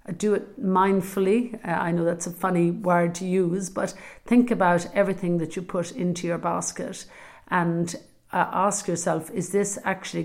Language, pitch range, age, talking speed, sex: English, 175-205 Hz, 50-69, 160 wpm, female